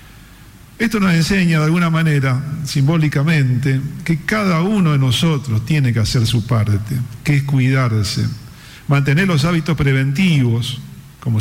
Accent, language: Argentinian, Spanish